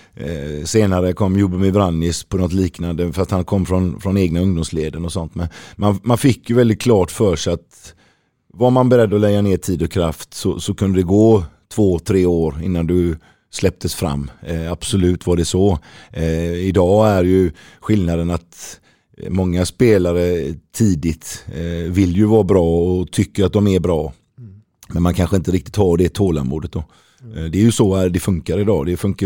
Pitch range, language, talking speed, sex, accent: 85-105 Hz, Swedish, 190 wpm, male, native